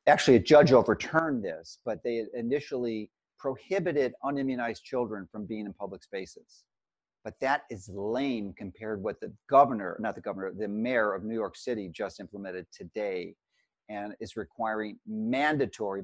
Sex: male